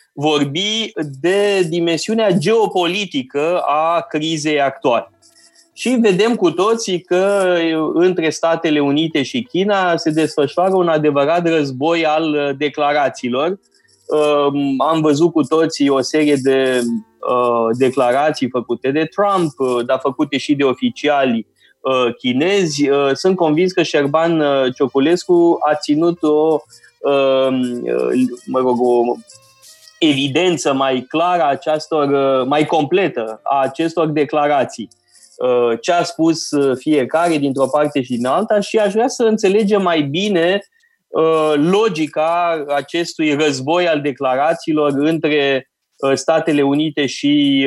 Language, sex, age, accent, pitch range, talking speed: Romanian, male, 20-39, native, 135-170 Hz, 110 wpm